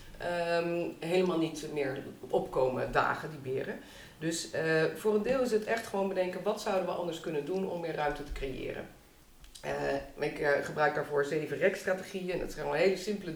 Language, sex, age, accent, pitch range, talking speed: Dutch, female, 40-59, Dutch, 145-185 Hz, 180 wpm